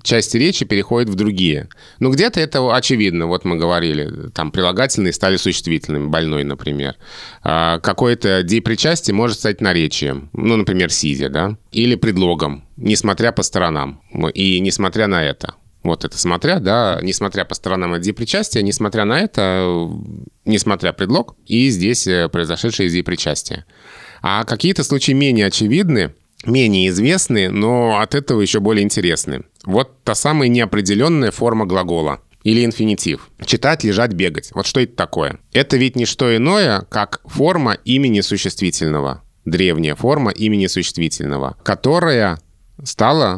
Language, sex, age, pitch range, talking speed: Russian, male, 20-39, 90-120 Hz, 135 wpm